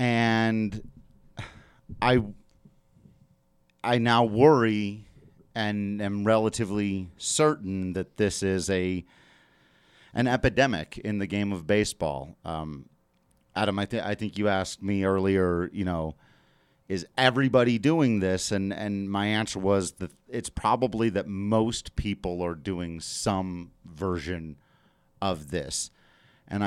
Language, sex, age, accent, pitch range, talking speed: English, male, 40-59, American, 95-120 Hz, 120 wpm